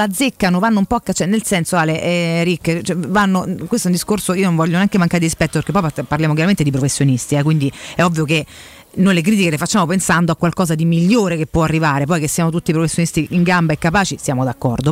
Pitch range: 160-210 Hz